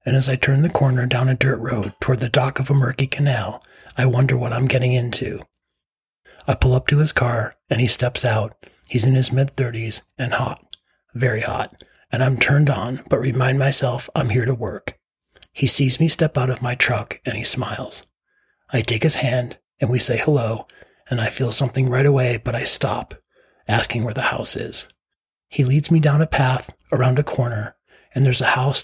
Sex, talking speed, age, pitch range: male, 205 wpm, 40-59, 120-140 Hz